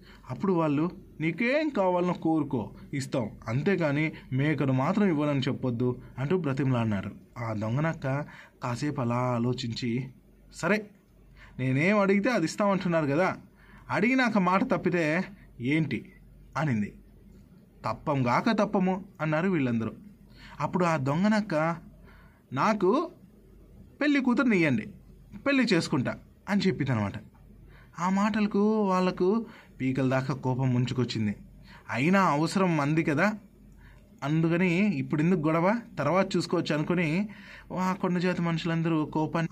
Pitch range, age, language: 140-195 Hz, 20-39, Telugu